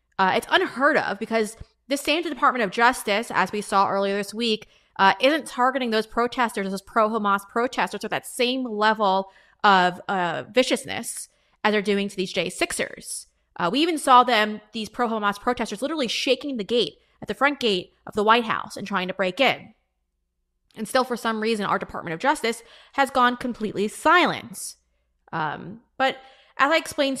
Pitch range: 195-250 Hz